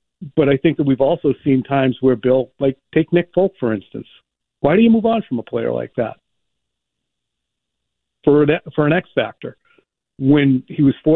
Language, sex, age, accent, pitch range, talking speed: English, male, 50-69, American, 120-155 Hz, 195 wpm